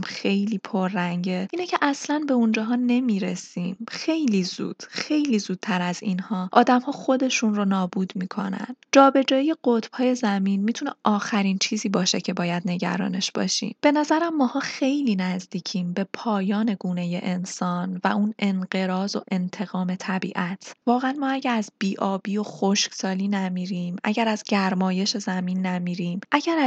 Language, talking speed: Persian, 135 wpm